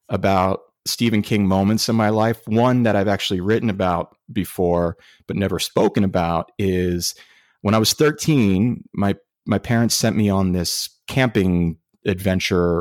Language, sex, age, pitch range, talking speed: English, male, 30-49, 90-110 Hz, 150 wpm